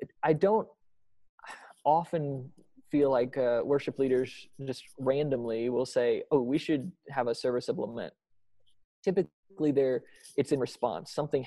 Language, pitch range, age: English, 130-165 Hz, 20-39